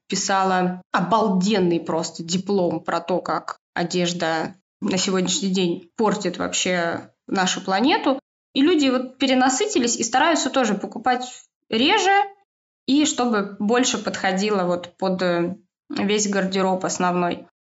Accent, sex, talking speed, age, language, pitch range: native, female, 105 wpm, 20-39, Russian, 185-270 Hz